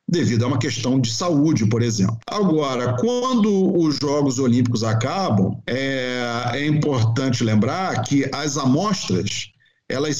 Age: 50-69